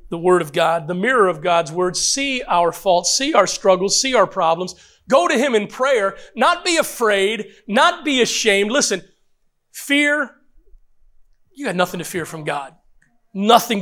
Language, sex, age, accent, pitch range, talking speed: English, male, 40-59, American, 180-235 Hz, 170 wpm